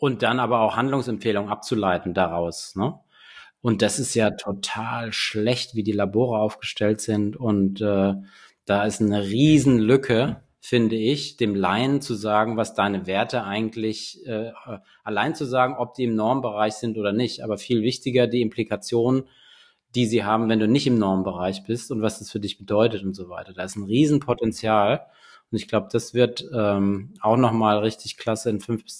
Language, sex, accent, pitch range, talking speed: German, male, German, 105-120 Hz, 180 wpm